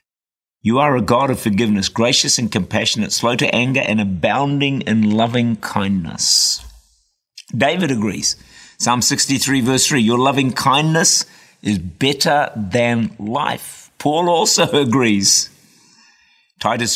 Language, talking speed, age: English, 120 wpm, 50-69